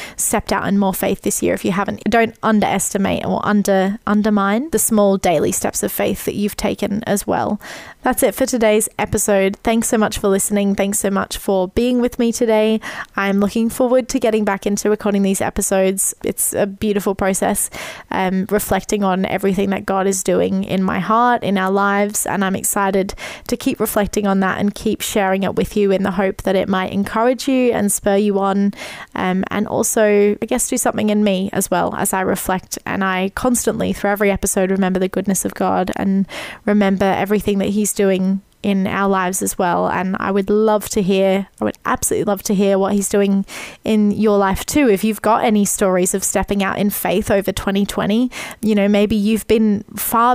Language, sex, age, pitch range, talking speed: English, female, 20-39, 195-215 Hz, 205 wpm